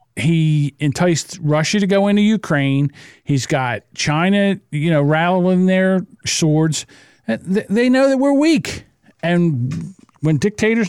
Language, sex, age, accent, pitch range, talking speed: English, male, 50-69, American, 135-210 Hz, 125 wpm